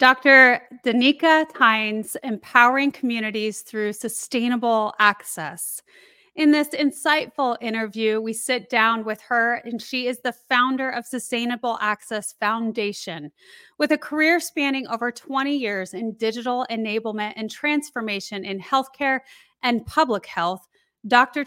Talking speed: 125 wpm